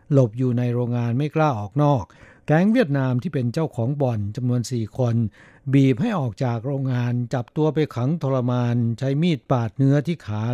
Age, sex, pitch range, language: 60-79, male, 115-145 Hz, Thai